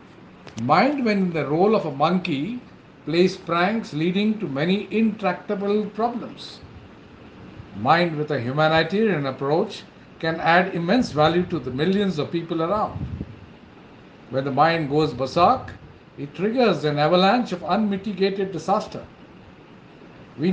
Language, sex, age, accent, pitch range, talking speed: Hindi, male, 50-69, native, 150-205 Hz, 130 wpm